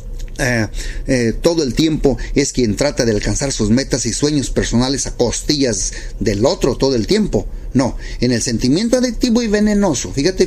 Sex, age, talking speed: male, 40-59, 170 wpm